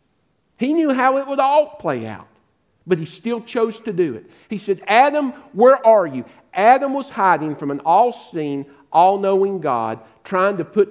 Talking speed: 175 wpm